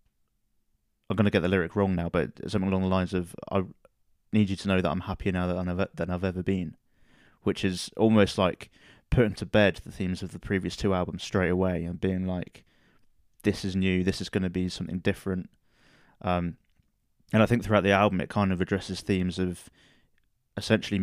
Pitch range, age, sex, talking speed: 90-100 Hz, 20-39, male, 205 wpm